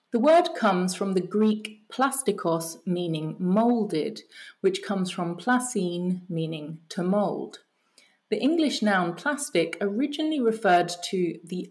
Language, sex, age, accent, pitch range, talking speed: English, female, 30-49, British, 175-225 Hz, 125 wpm